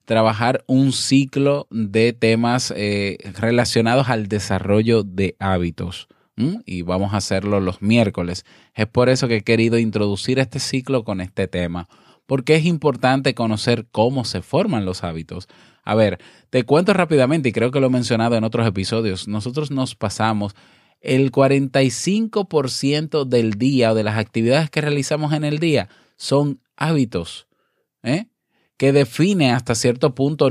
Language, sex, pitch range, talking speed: Spanish, male, 105-135 Hz, 150 wpm